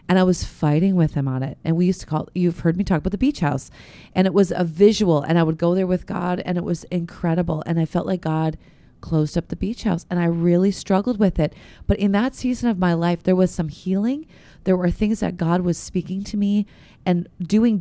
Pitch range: 165-200 Hz